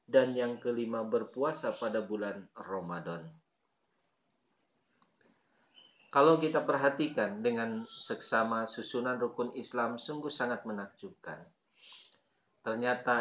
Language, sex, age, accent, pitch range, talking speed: Indonesian, male, 40-59, native, 110-135 Hz, 85 wpm